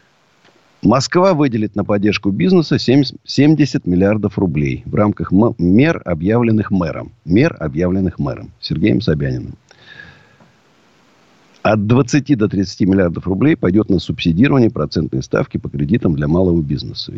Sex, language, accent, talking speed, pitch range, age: male, Russian, native, 120 wpm, 90-130 Hz, 50-69